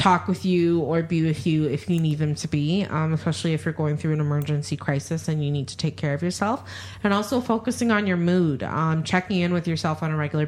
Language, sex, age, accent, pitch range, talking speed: English, female, 20-39, American, 150-185 Hz, 250 wpm